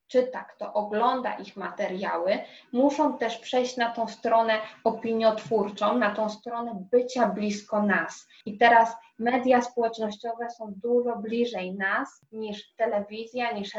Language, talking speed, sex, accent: Polish, 125 wpm, female, native